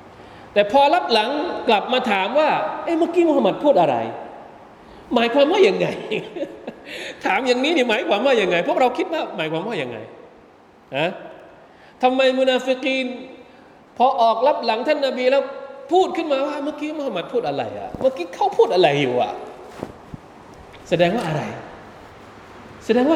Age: 20-39